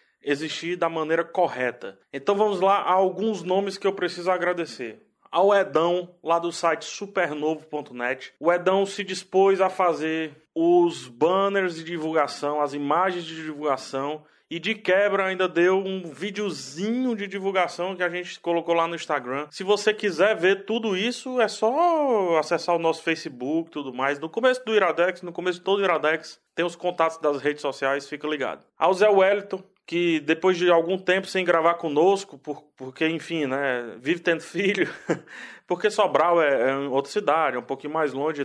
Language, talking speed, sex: Portuguese, 165 wpm, male